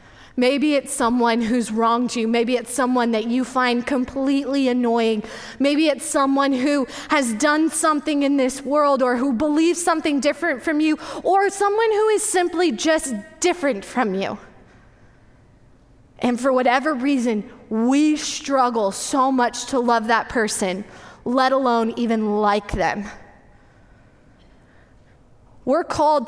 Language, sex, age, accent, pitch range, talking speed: English, female, 20-39, American, 235-305 Hz, 135 wpm